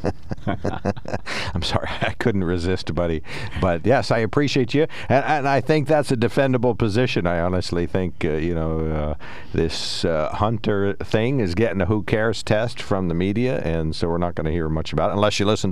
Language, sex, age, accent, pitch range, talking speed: English, male, 50-69, American, 85-115 Hz, 200 wpm